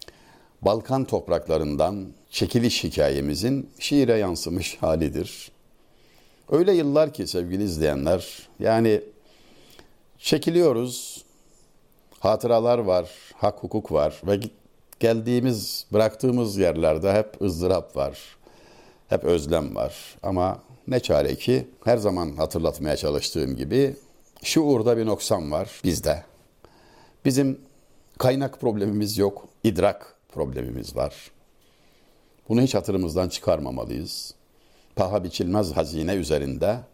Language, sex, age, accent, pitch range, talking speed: Turkish, male, 60-79, native, 85-120 Hz, 95 wpm